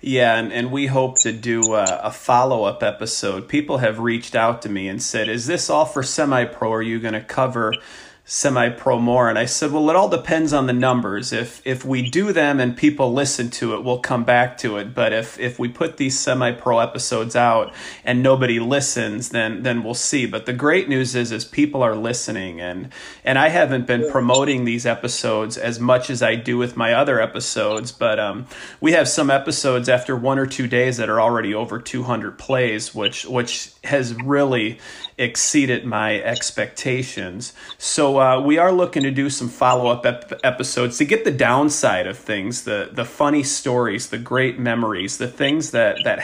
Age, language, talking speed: 30-49, English, 205 wpm